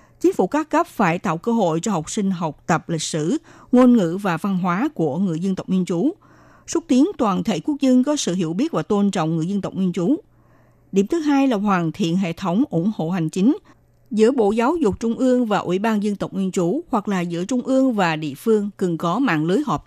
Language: Vietnamese